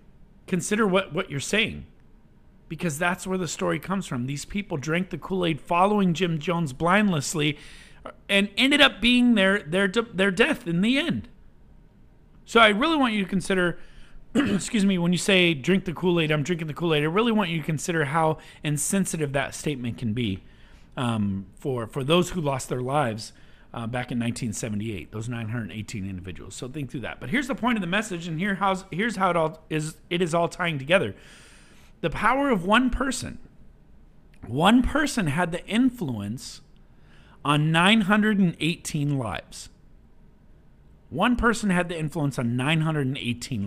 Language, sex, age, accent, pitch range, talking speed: English, male, 40-59, American, 140-200 Hz, 170 wpm